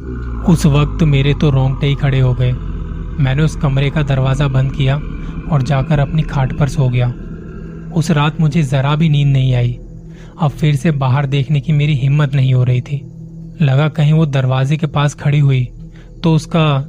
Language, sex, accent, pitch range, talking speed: Hindi, male, native, 135-160 Hz, 190 wpm